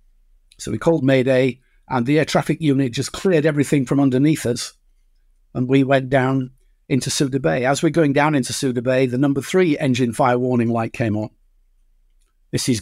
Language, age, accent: English, 50-69, British